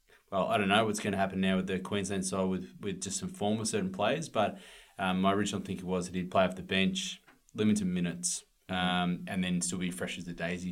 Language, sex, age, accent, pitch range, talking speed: English, male, 20-39, Australian, 90-105 Hz, 245 wpm